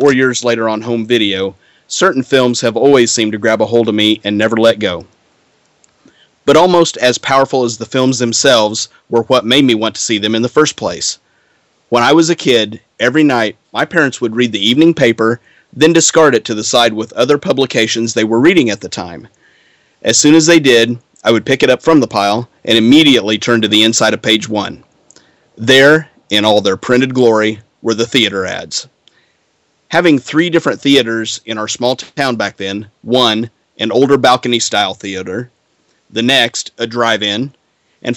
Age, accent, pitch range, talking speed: 30-49, American, 110-135 Hz, 190 wpm